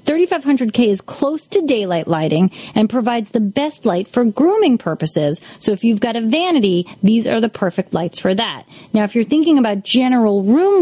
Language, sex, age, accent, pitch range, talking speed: English, female, 30-49, American, 190-260 Hz, 190 wpm